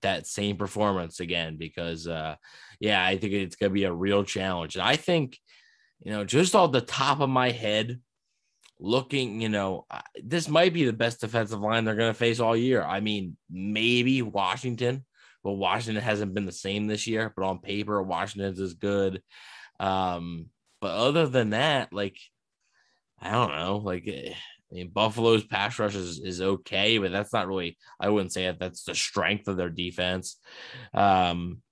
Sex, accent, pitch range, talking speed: male, American, 90-115 Hz, 180 wpm